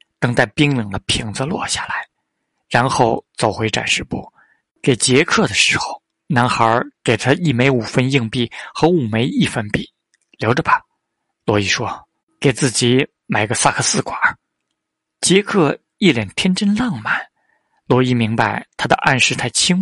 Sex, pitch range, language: male, 120-155 Hz, Chinese